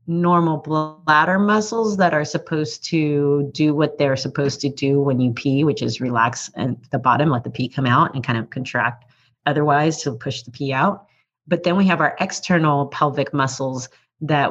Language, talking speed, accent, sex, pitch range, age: English, 190 wpm, American, female, 135-160 Hz, 30-49